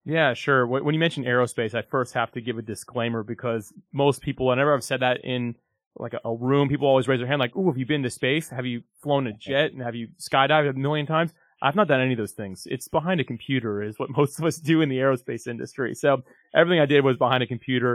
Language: English